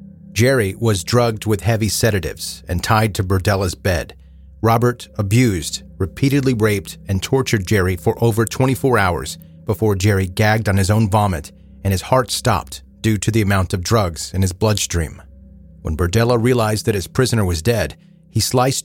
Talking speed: 165 wpm